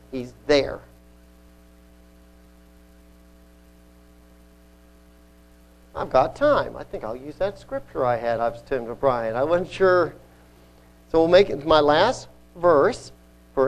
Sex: male